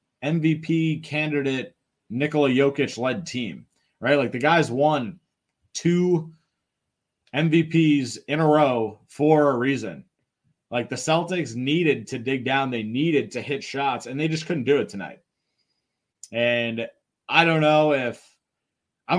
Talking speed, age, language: 140 wpm, 30-49, English